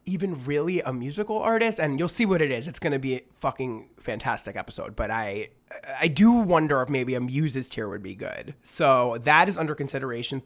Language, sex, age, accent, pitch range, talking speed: English, male, 30-49, American, 120-150 Hz, 205 wpm